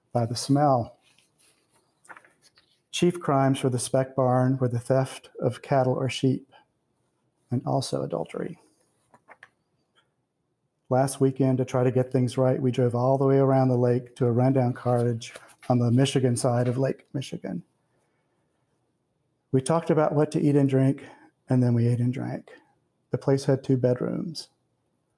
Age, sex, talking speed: 40-59, male, 155 wpm